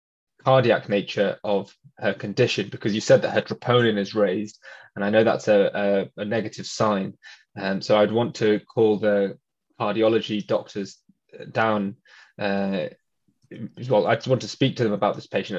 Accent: British